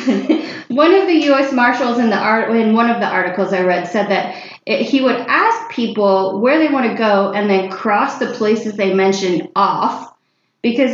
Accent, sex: American, female